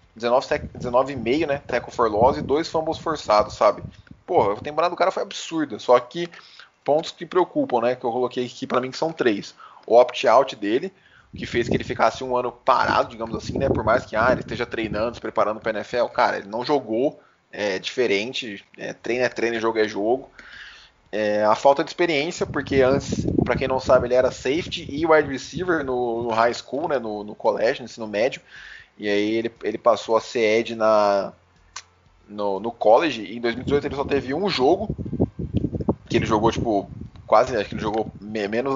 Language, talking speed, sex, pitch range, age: Portuguese, 200 wpm, male, 110-140 Hz, 20-39